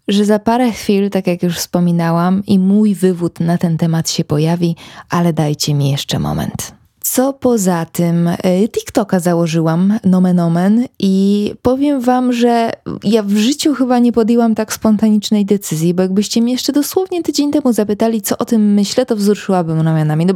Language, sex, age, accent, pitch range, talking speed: Polish, female, 20-39, native, 175-235 Hz, 170 wpm